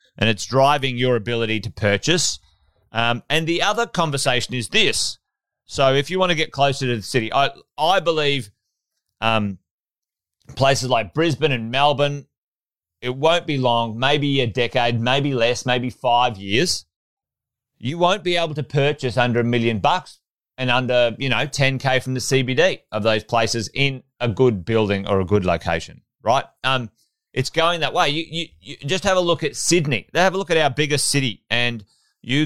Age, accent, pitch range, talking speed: 30-49, Australian, 115-145 Hz, 185 wpm